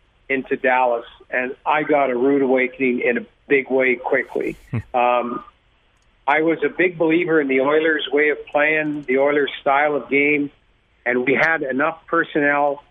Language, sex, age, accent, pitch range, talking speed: English, male, 50-69, American, 130-150 Hz, 165 wpm